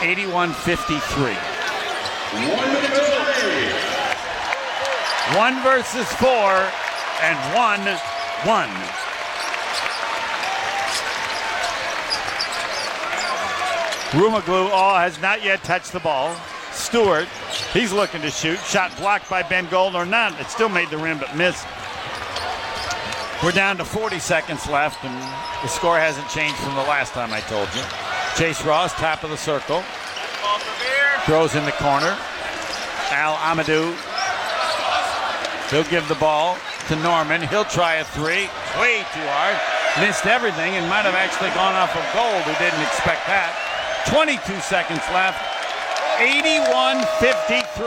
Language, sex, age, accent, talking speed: English, male, 60-79, American, 120 wpm